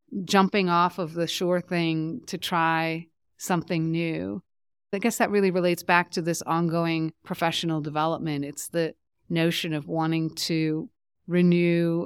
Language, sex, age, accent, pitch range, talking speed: English, female, 30-49, American, 155-180 Hz, 140 wpm